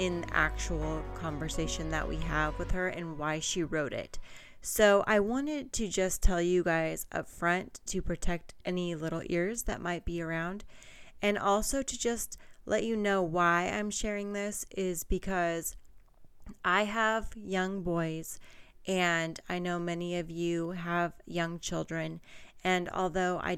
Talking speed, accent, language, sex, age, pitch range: 160 wpm, American, English, female, 30-49, 165-195 Hz